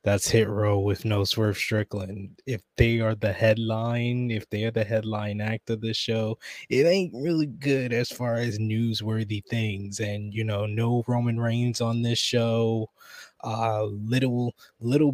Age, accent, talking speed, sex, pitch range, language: 20-39, American, 170 wpm, male, 110-120 Hz, English